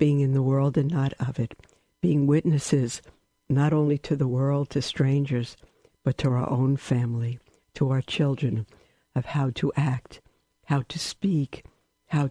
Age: 60-79